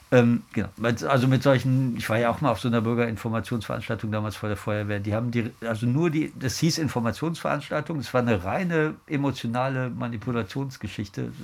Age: 50-69